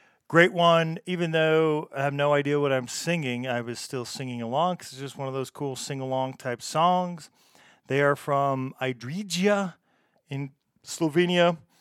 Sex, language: male, English